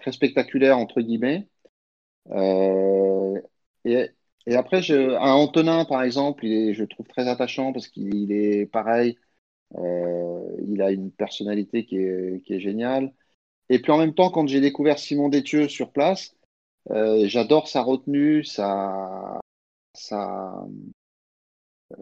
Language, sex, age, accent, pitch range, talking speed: French, male, 40-59, French, 105-145 Hz, 140 wpm